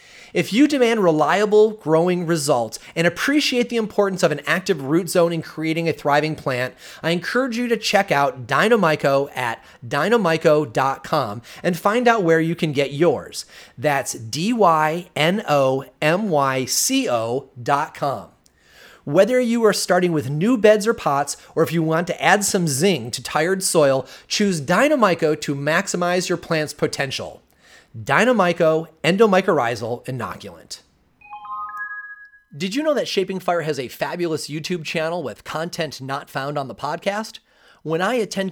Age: 30-49